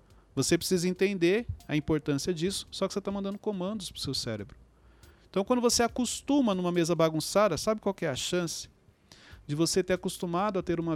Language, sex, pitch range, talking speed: Portuguese, male, 140-200 Hz, 195 wpm